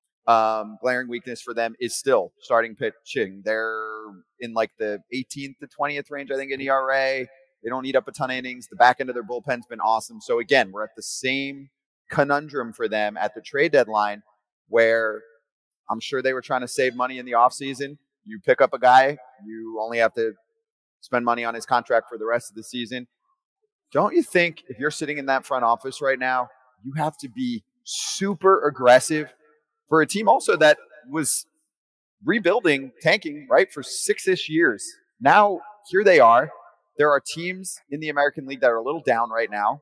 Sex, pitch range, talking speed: male, 120-170 Hz, 195 wpm